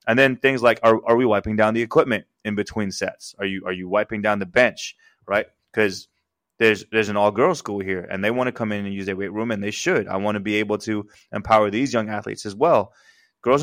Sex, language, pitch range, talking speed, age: male, English, 105-125 Hz, 255 wpm, 20-39